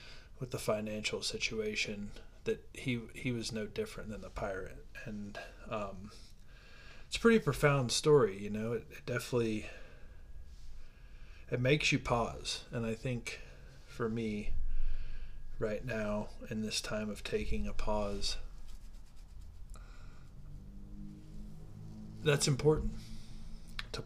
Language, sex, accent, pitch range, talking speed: English, male, American, 75-120 Hz, 115 wpm